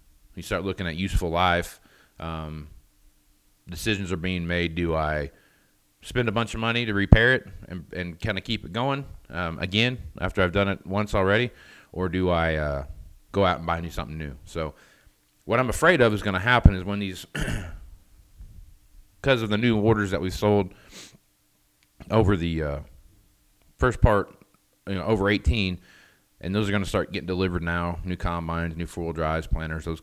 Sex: male